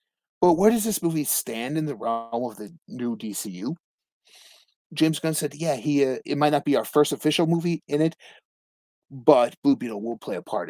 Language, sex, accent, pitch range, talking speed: English, male, American, 120-170 Hz, 200 wpm